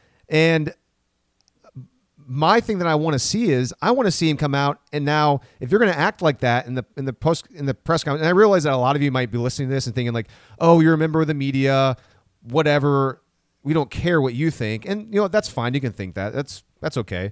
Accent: American